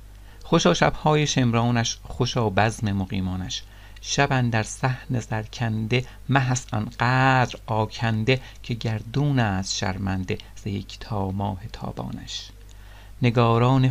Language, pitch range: Persian, 100-125 Hz